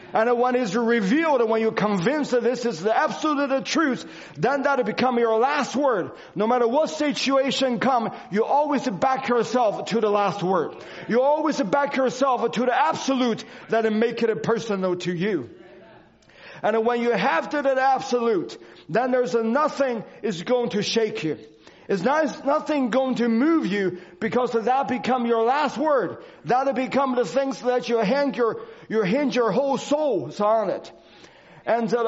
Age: 40-59